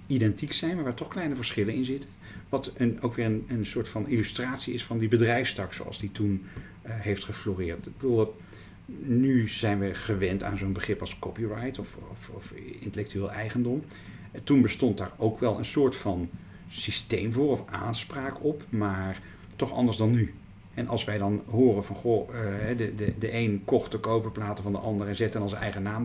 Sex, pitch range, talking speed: male, 100-120 Hz, 190 wpm